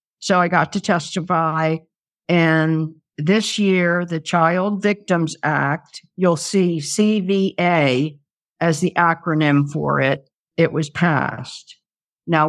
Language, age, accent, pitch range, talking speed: English, 60-79, American, 160-190 Hz, 115 wpm